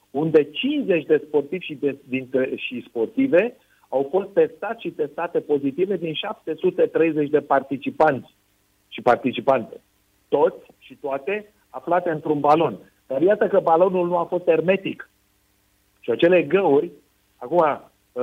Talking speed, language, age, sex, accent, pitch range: 130 wpm, Romanian, 50-69, male, native, 135-180 Hz